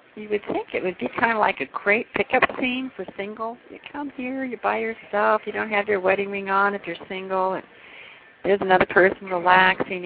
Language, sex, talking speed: English, female, 220 wpm